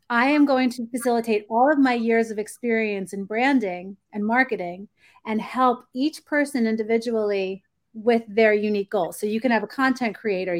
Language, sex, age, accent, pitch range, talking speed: English, female, 30-49, American, 210-255 Hz, 175 wpm